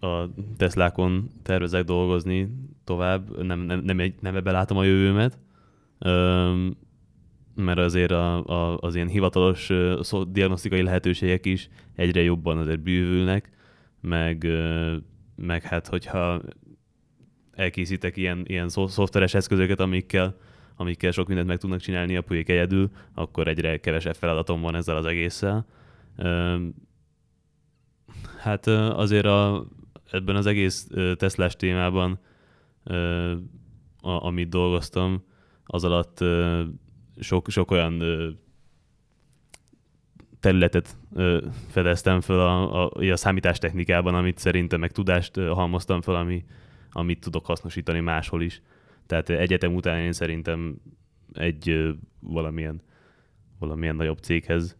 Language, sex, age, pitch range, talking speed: English, male, 20-39, 85-95 Hz, 110 wpm